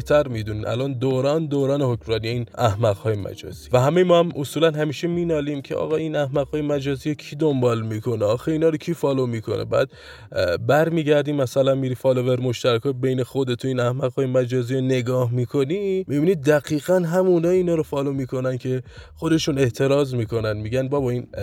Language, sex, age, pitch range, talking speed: Persian, male, 20-39, 115-150 Hz, 195 wpm